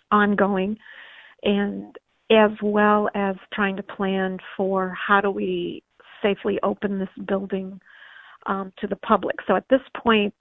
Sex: female